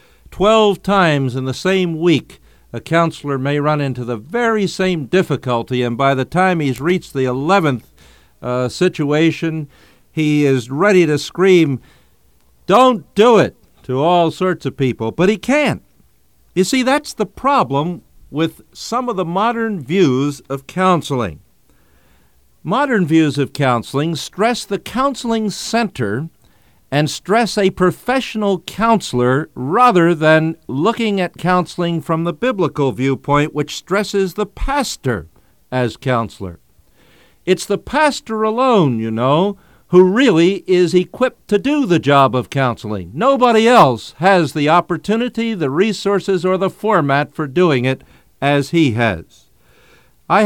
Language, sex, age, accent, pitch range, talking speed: English, male, 50-69, American, 135-195 Hz, 135 wpm